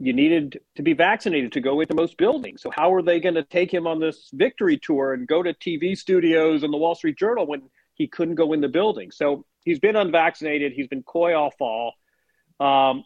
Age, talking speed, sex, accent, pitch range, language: 40-59, 225 wpm, male, American, 140-185 Hz, English